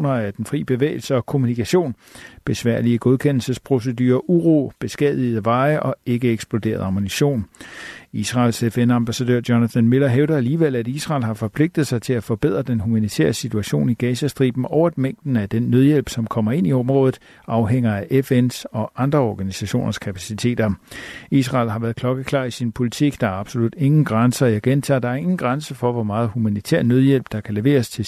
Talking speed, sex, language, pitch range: 170 wpm, male, Danish, 110-135 Hz